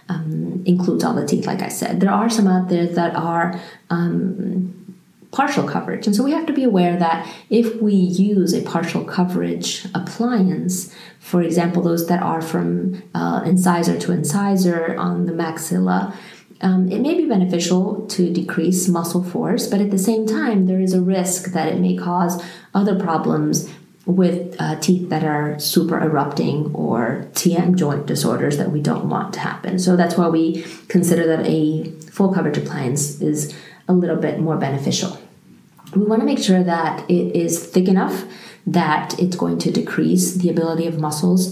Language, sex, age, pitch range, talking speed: English, female, 30-49, 165-195 Hz, 175 wpm